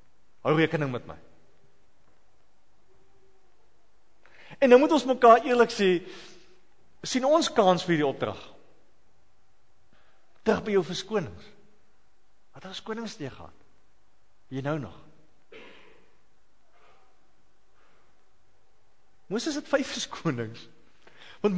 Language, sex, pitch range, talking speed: English, male, 180-285 Hz, 95 wpm